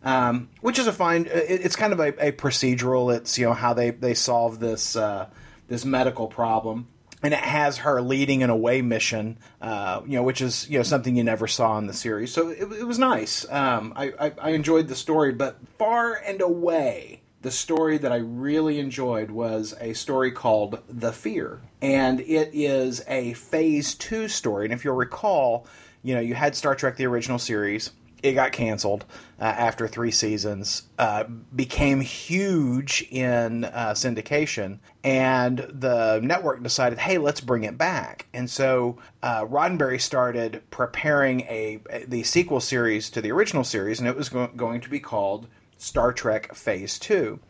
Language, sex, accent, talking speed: English, male, American, 180 wpm